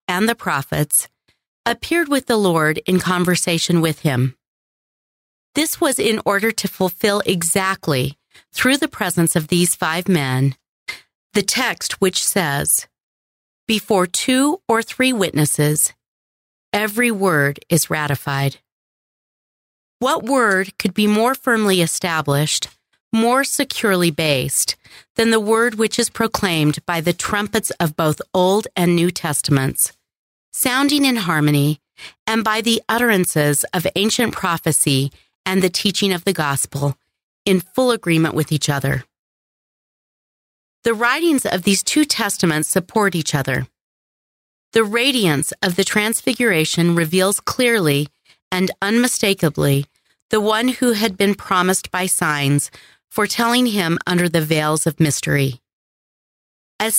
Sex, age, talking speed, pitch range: female, 40-59, 125 wpm, 155-225 Hz